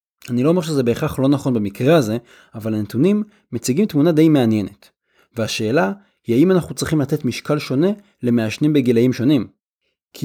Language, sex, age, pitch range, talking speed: Hebrew, male, 30-49, 110-155 Hz, 160 wpm